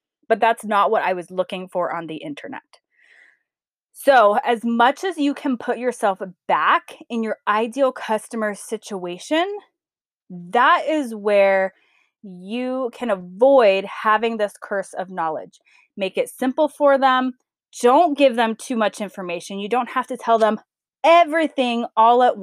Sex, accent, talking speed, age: female, American, 150 wpm, 20-39